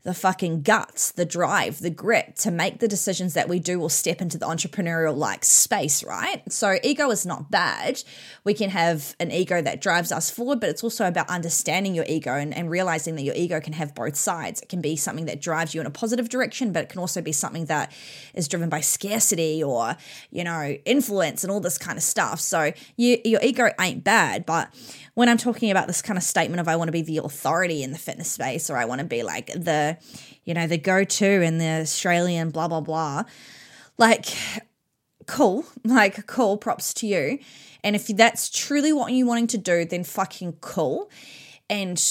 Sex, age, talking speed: female, 20-39, 210 wpm